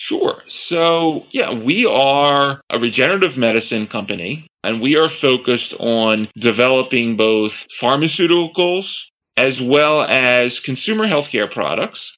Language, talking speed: English, 115 wpm